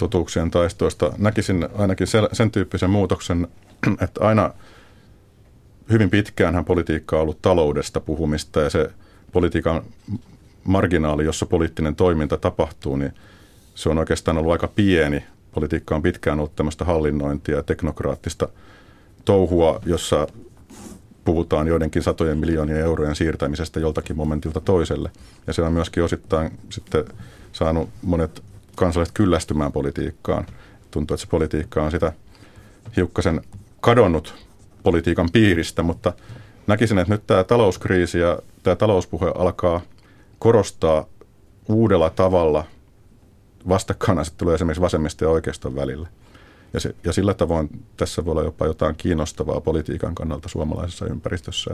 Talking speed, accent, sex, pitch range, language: 120 wpm, native, male, 80-100 Hz, Finnish